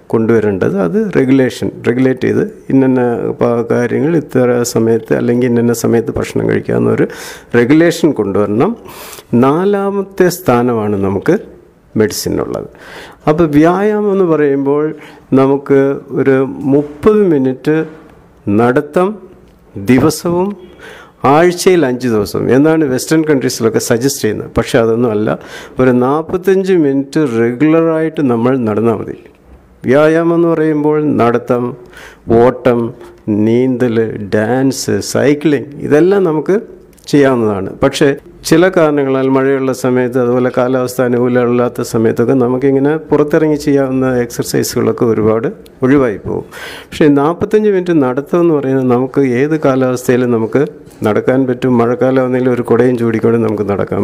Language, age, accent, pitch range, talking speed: Malayalam, 50-69, native, 120-150 Hz, 100 wpm